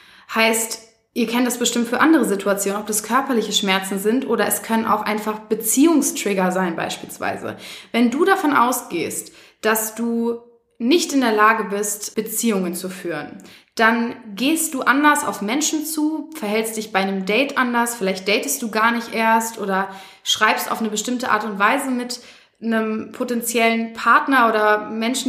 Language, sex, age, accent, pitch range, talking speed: German, female, 20-39, German, 210-255 Hz, 160 wpm